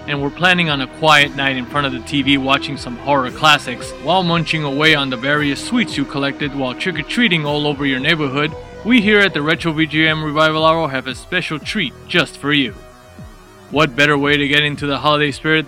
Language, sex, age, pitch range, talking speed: English, male, 20-39, 135-160 Hz, 210 wpm